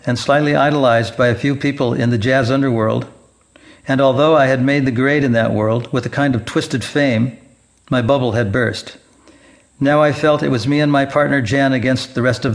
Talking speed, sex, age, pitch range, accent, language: 215 wpm, male, 60-79, 125-150 Hz, American, English